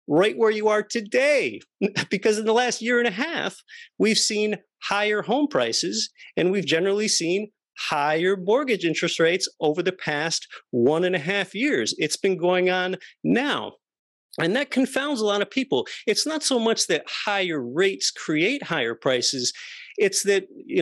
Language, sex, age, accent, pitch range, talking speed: English, male, 40-59, American, 155-235 Hz, 170 wpm